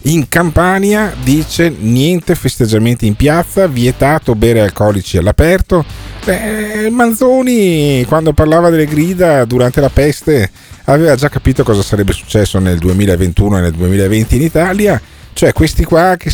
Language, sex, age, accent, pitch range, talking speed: Italian, male, 40-59, native, 95-155 Hz, 135 wpm